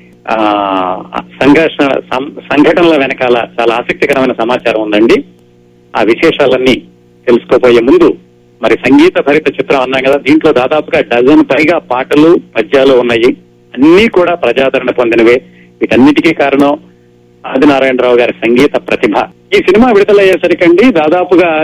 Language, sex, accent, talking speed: Telugu, male, native, 110 wpm